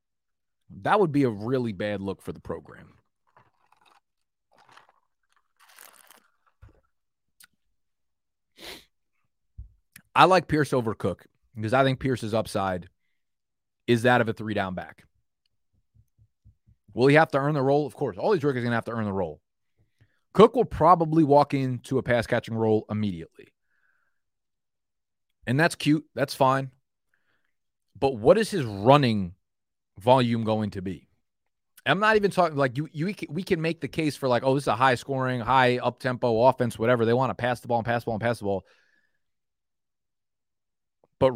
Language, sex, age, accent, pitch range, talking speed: English, male, 30-49, American, 110-145 Hz, 160 wpm